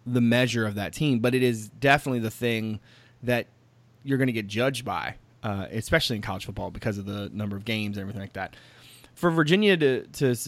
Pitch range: 110-130 Hz